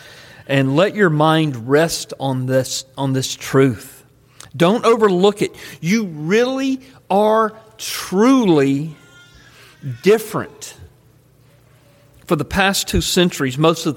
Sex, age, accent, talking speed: male, 50-69, American, 105 wpm